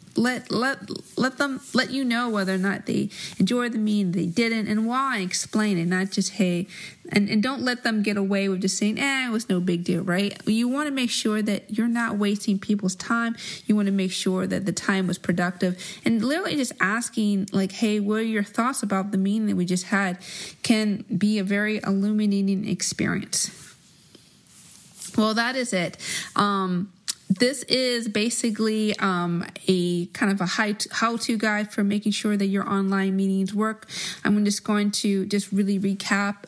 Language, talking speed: English, 190 wpm